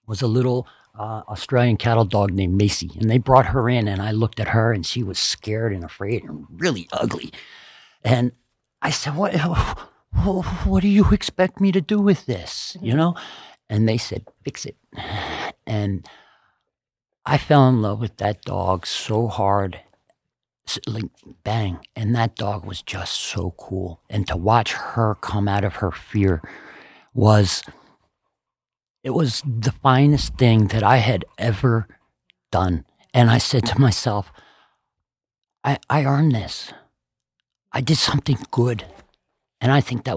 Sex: male